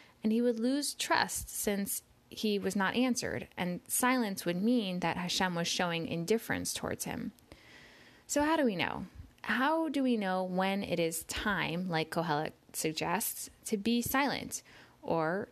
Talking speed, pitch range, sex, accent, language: 160 wpm, 170-240 Hz, female, American, English